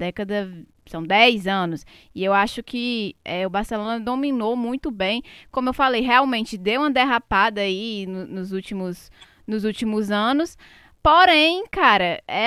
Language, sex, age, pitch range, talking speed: Portuguese, female, 10-29, 220-300 Hz, 135 wpm